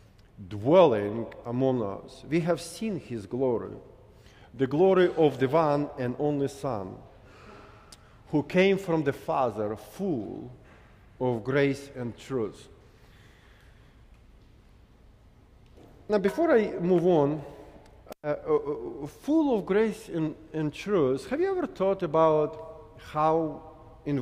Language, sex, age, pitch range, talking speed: English, male, 40-59, 110-155 Hz, 115 wpm